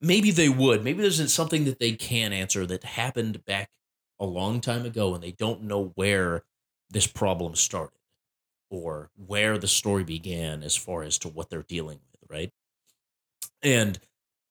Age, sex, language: 30-49, male, English